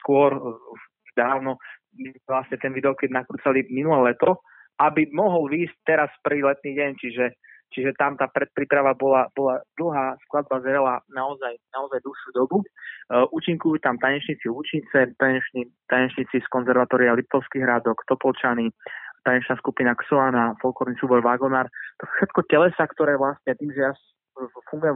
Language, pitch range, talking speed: Slovak, 125-145 Hz, 130 wpm